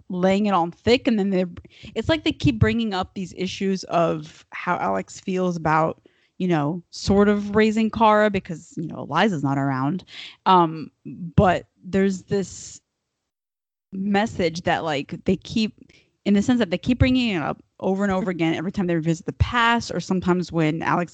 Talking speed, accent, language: 180 wpm, American, English